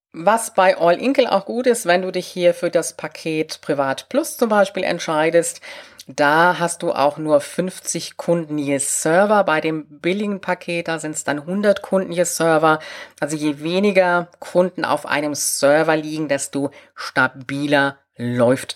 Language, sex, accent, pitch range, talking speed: German, female, German, 140-195 Hz, 165 wpm